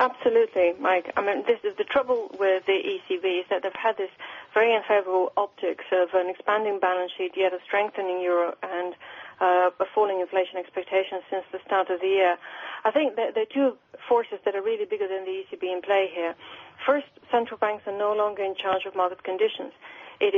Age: 40-59